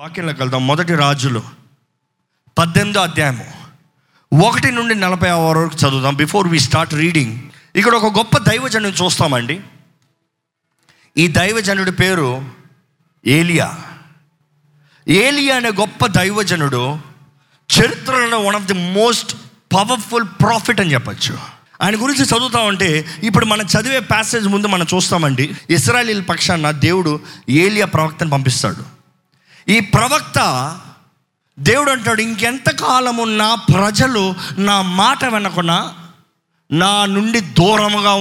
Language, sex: Telugu, male